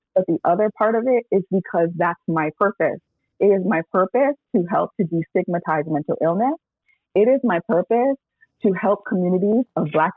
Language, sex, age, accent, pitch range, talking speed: English, female, 30-49, American, 165-200 Hz, 175 wpm